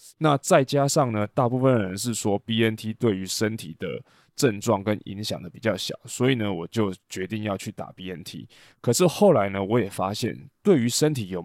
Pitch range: 100-125 Hz